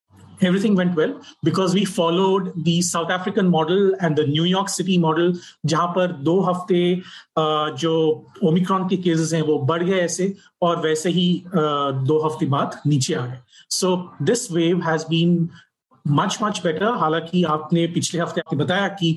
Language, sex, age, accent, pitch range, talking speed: Hindi, male, 30-49, native, 155-180 Hz, 160 wpm